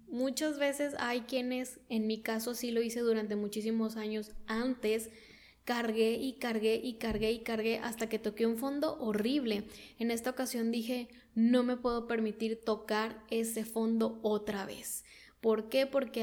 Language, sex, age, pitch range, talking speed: Spanish, female, 10-29, 220-240 Hz, 160 wpm